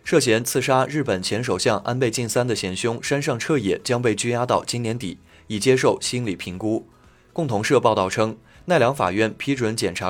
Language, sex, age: Chinese, male, 20-39